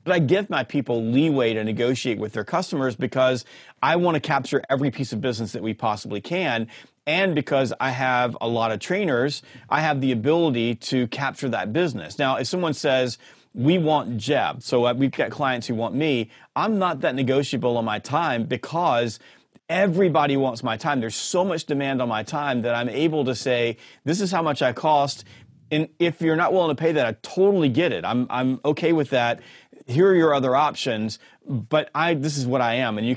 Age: 30-49